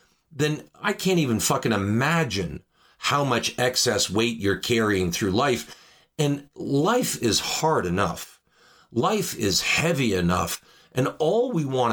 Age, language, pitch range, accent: 50-69, English, 115-155 Hz, American